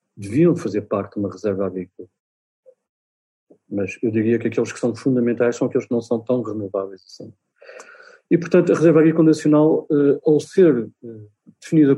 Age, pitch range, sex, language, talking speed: 40-59, 115-145 Hz, male, Portuguese, 170 wpm